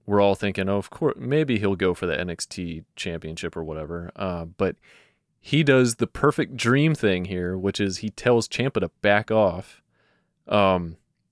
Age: 30-49